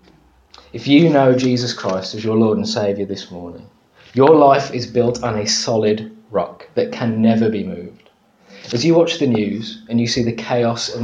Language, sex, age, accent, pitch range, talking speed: English, male, 30-49, British, 105-135 Hz, 195 wpm